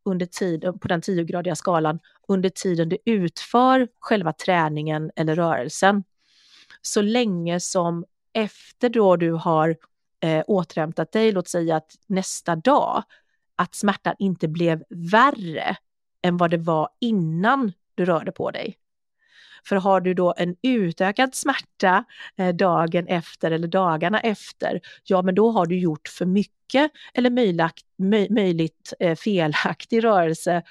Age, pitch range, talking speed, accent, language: 30-49, 165-200 Hz, 135 wpm, native, Swedish